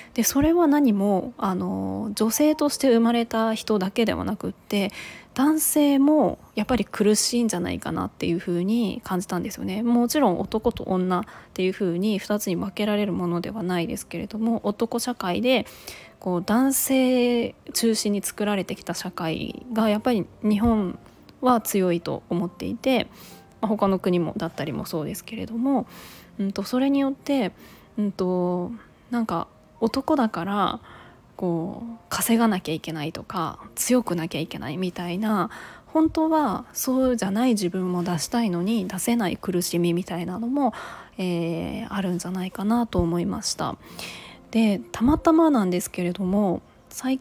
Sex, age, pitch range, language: female, 20-39, 180-240 Hz, Japanese